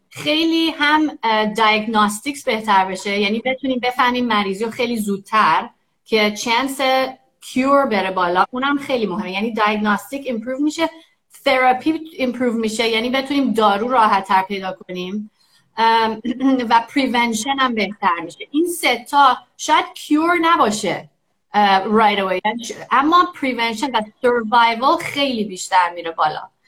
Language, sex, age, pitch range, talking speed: Persian, female, 30-49, 210-265 Hz, 125 wpm